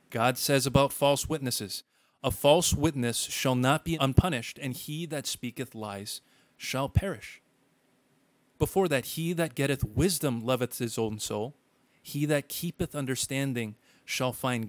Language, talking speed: English, 145 wpm